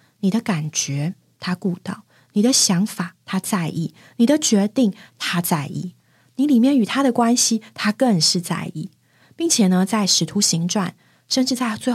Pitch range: 180-240 Hz